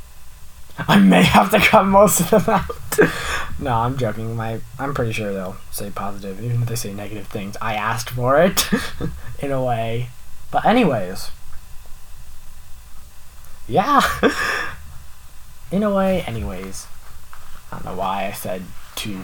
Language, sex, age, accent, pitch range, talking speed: English, male, 10-29, American, 90-145 Hz, 140 wpm